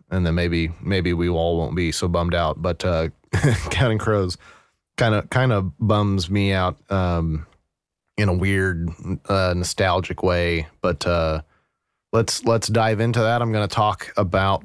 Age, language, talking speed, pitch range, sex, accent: 30-49, English, 170 wpm, 85-105 Hz, male, American